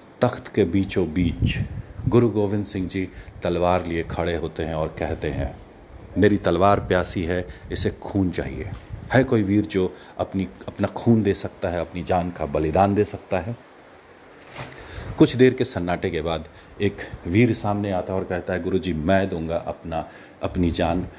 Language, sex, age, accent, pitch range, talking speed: Hindi, male, 40-59, native, 85-105 Hz, 175 wpm